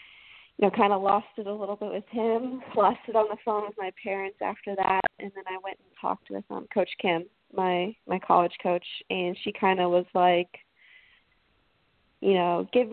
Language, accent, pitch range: English, American, 180-210 Hz